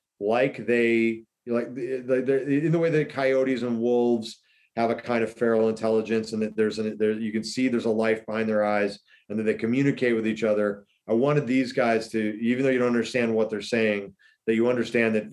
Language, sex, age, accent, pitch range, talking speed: English, male, 40-59, American, 110-125 Hz, 225 wpm